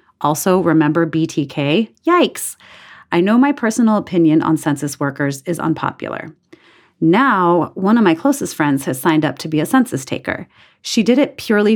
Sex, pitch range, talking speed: female, 155-195 Hz, 165 wpm